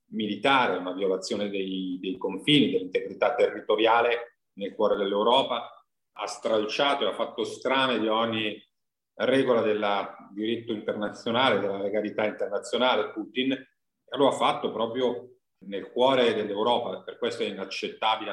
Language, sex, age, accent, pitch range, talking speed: Italian, male, 40-59, native, 110-155 Hz, 125 wpm